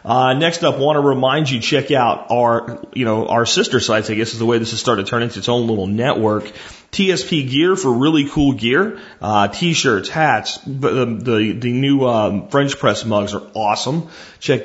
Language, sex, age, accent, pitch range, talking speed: English, male, 40-59, American, 110-155 Hz, 210 wpm